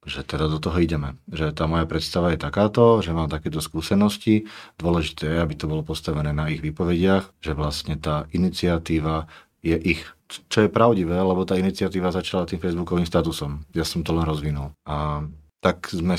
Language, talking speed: Slovak, 180 wpm